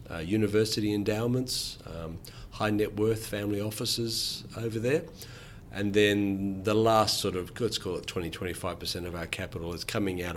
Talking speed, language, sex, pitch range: 160 wpm, English, male, 95-115 Hz